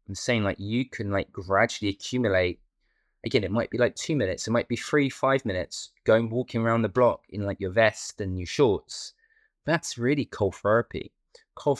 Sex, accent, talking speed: male, British, 195 wpm